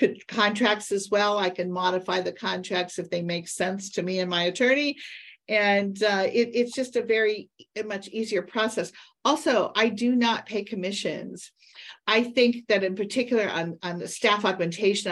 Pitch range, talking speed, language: 175-210 Hz, 165 wpm, English